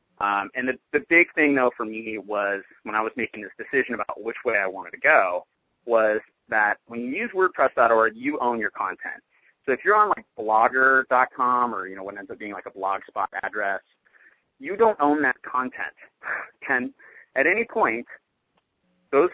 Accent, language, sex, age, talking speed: American, English, male, 30-49, 190 wpm